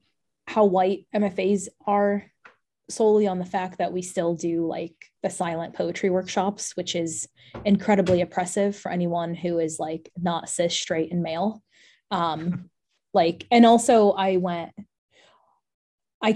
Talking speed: 140 wpm